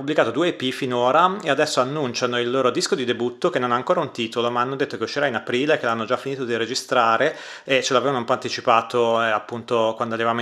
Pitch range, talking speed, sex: 120-140 Hz, 240 wpm, male